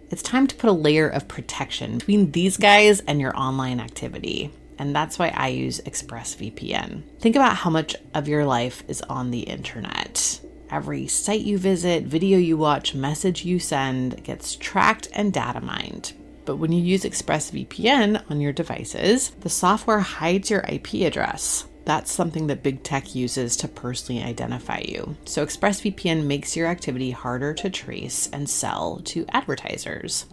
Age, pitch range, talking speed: 30-49, 130-185 Hz, 165 wpm